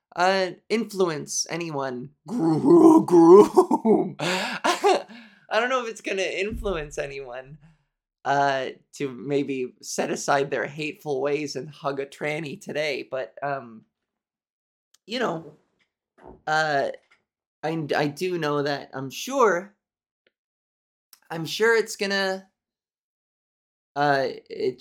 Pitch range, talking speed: 140-210 Hz, 105 wpm